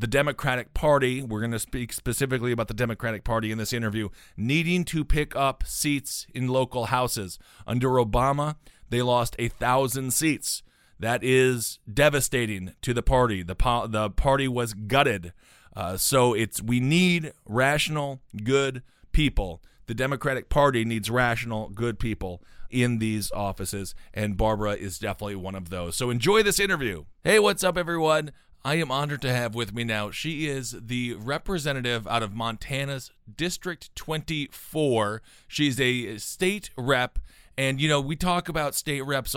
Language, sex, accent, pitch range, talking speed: English, male, American, 115-145 Hz, 160 wpm